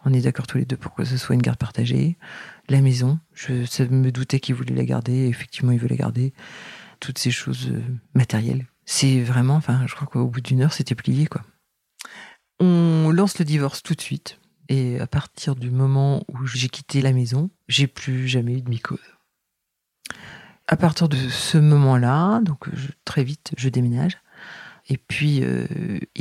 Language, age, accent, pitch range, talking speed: French, 40-59, French, 130-165 Hz, 185 wpm